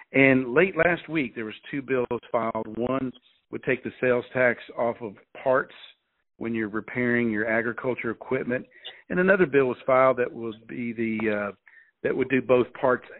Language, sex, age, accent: English, male, 50-69, American